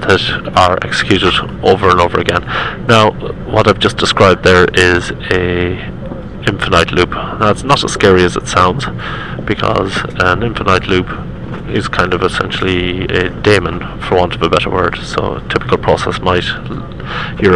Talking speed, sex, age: 160 wpm, male, 30-49